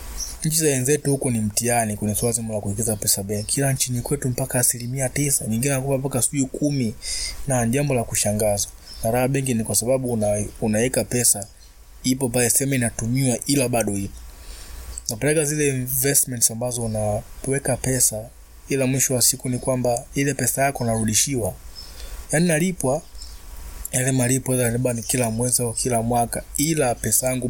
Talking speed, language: 150 wpm, Swahili